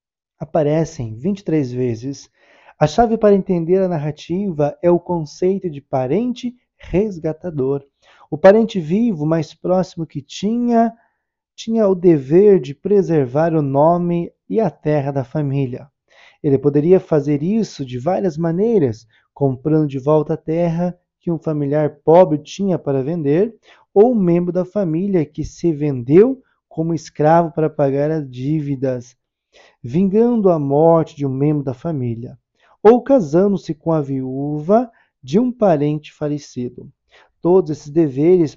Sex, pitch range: male, 145-195 Hz